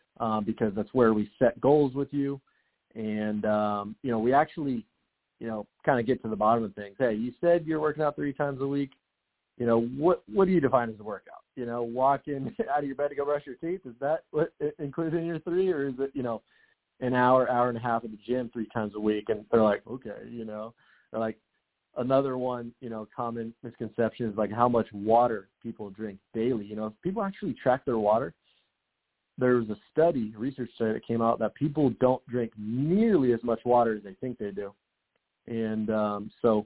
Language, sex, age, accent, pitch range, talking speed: English, male, 30-49, American, 110-135 Hz, 225 wpm